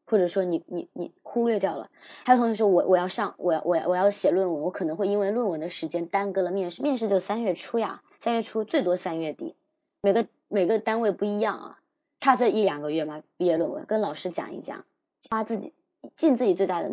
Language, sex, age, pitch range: Chinese, male, 20-39, 180-260 Hz